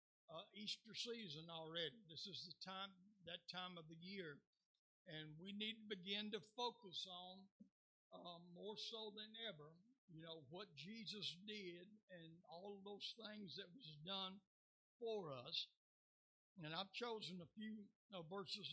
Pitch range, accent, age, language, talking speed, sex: 165-205 Hz, American, 60-79, English, 155 wpm, male